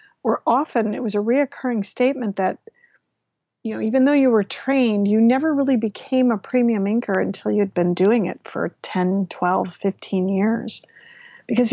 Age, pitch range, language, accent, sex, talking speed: 50-69, 200-250 Hz, English, American, female, 165 wpm